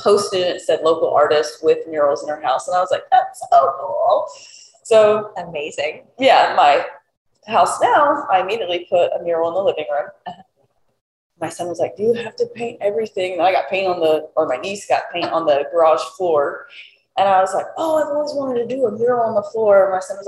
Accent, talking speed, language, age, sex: American, 220 wpm, English, 20-39, female